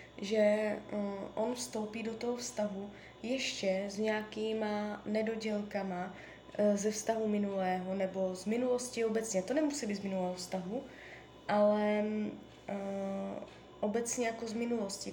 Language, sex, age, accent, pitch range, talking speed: Czech, female, 20-39, native, 195-235 Hz, 110 wpm